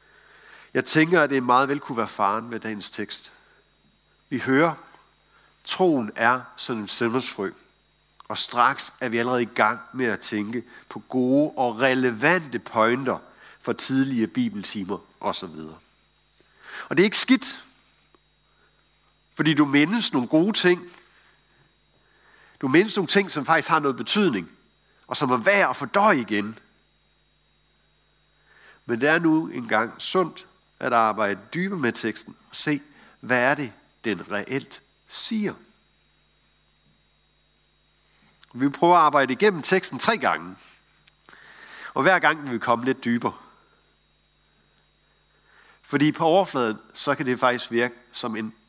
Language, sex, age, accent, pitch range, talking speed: Danish, male, 60-79, native, 110-165 Hz, 135 wpm